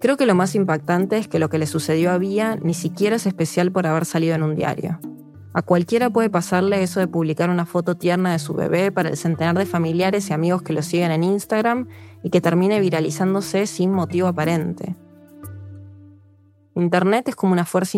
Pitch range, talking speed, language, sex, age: 165-195 Hz, 200 wpm, Spanish, female, 20-39